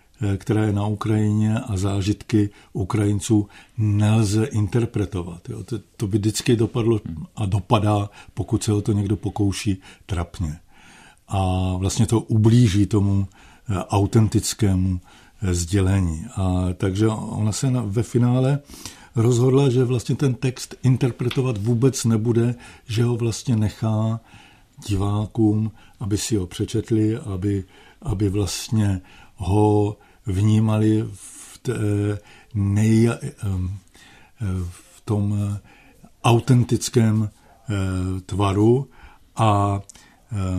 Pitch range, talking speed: 100-115 Hz, 95 wpm